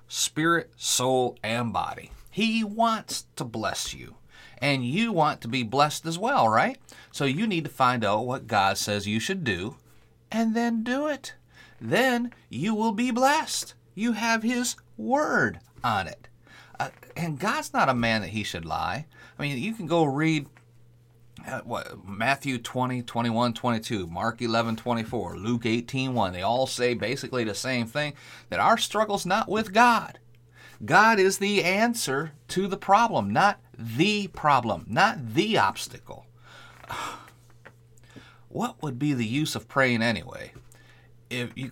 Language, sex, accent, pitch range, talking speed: English, male, American, 115-150 Hz, 155 wpm